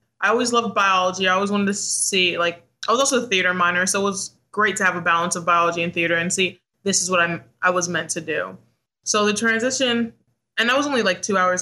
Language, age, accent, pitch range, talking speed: English, 20-39, American, 175-205 Hz, 255 wpm